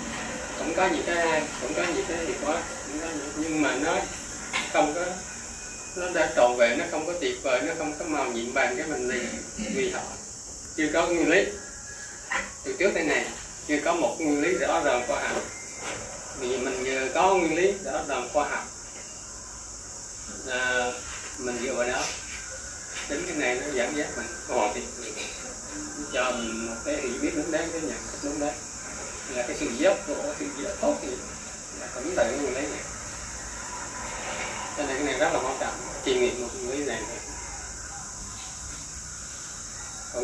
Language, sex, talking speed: Vietnamese, male, 160 wpm